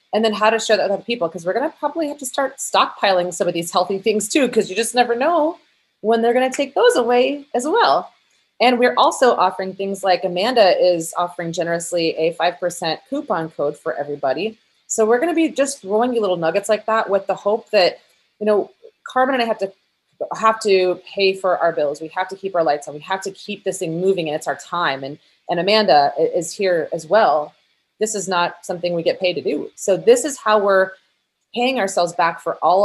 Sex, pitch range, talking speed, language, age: female, 170-220 Hz, 225 wpm, English, 30-49